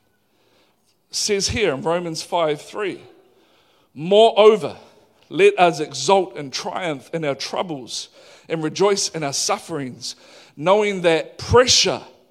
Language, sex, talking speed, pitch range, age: English, male, 105 wpm, 170-210 Hz, 50-69